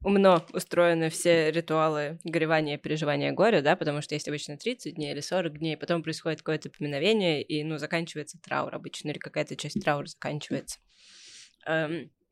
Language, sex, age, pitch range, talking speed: Russian, female, 20-39, 155-185 Hz, 155 wpm